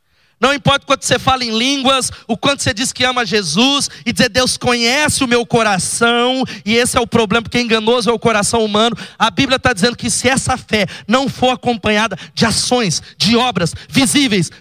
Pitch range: 185-245 Hz